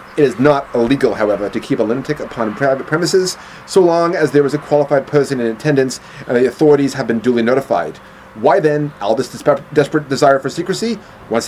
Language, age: English, 30-49